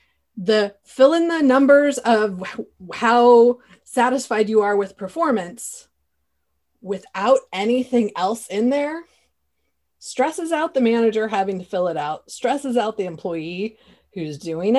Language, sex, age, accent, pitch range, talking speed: English, female, 30-49, American, 190-255 Hz, 130 wpm